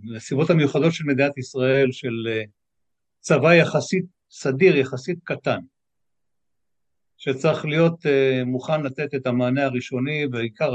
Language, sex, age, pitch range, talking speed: Hebrew, male, 60-79, 120-165 Hz, 105 wpm